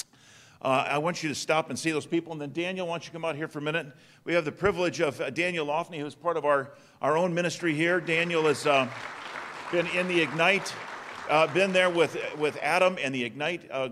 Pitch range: 115-150 Hz